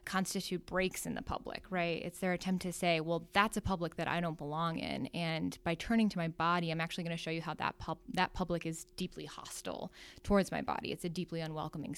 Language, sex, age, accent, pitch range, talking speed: English, female, 10-29, American, 165-185 Hz, 235 wpm